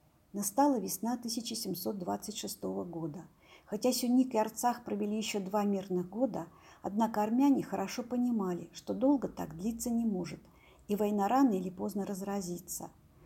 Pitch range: 190-245 Hz